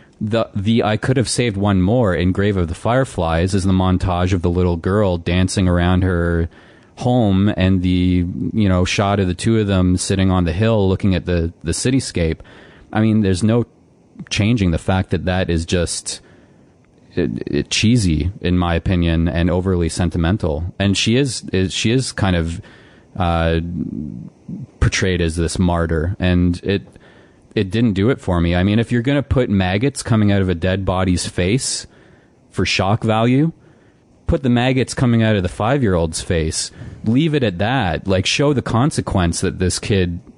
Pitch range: 90-110 Hz